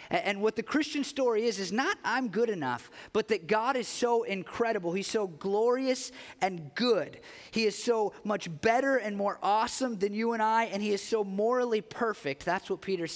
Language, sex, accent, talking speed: English, male, American, 195 wpm